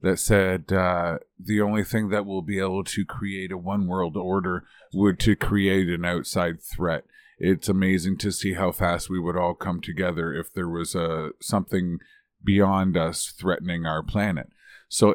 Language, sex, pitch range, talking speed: English, male, 90-105 Hz, 170 wpm